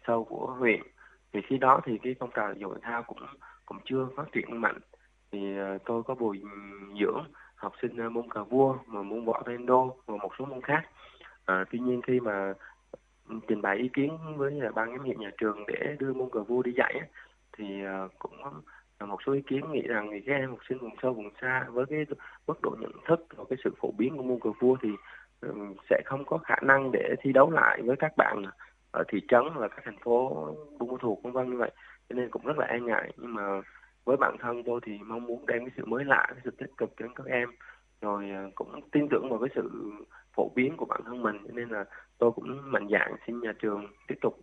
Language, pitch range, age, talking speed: Vietnamese, 105-130 Hz, 20-39, 230 wpm